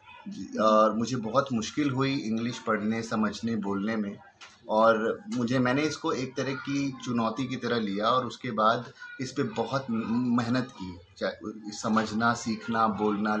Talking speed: 150 wpm